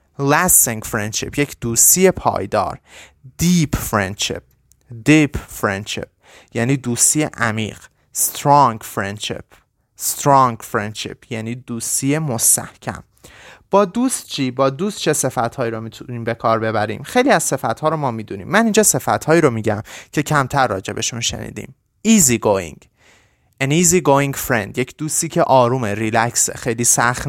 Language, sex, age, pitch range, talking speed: Persian, male, 30-49, 110-145 Hz, 140 wpm